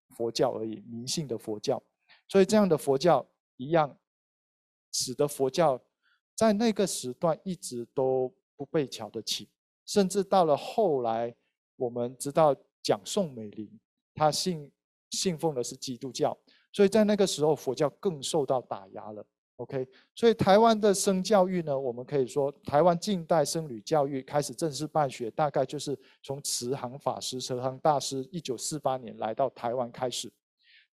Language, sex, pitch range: Chinese, male, 125-175 Hz